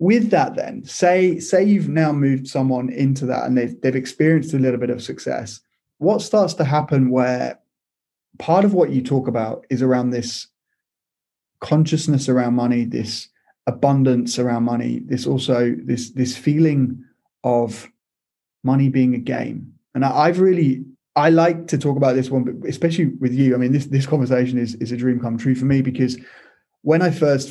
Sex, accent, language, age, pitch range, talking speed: male, British, English, 20-39, 125-150 Hz, 180 wpm